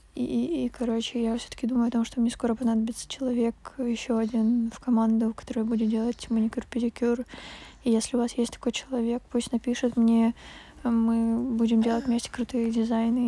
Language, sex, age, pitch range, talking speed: Russian, female, 20-39, 230-255 Hz, 170 wpm